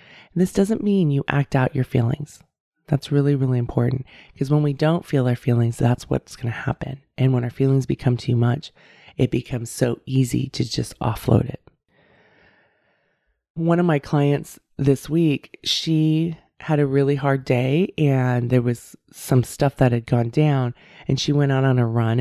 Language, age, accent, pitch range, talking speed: English, 20-39, American, 125-155 Hz, 180 wpm